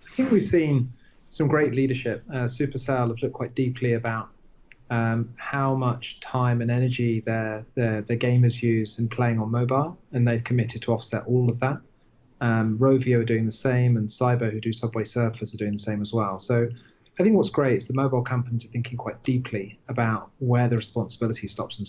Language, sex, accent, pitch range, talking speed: English, male, British, 115-130 Hz, 200 wpm